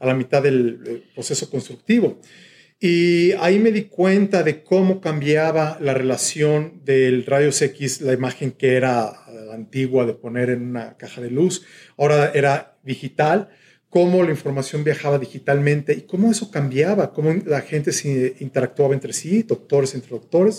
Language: Spanish